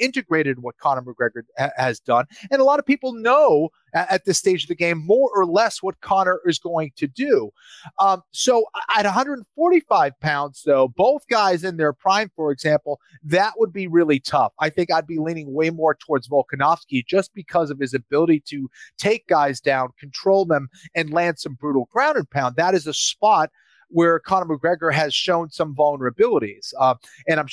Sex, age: male, 30-49